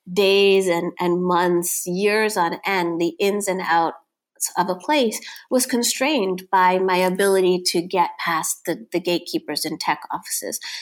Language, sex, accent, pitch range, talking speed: English, female, American, 180-235 Hz, 155 wpm